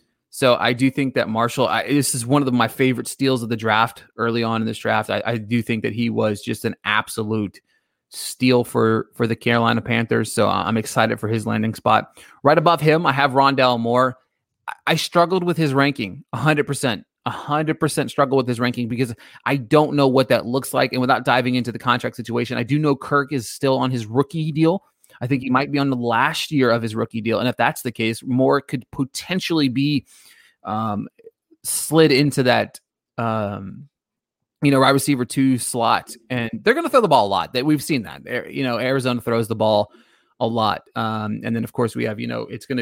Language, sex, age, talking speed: English, male, 30-49, 215 wpm